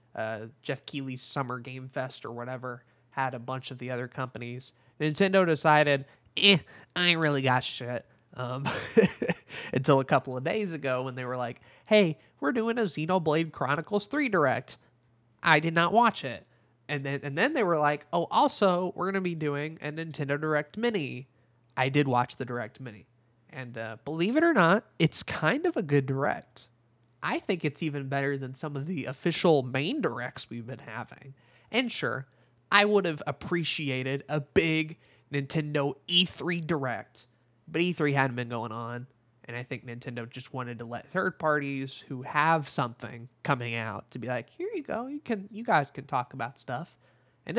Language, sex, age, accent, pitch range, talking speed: English, male, 20-39, American, 125-160 Hz, 185 wpm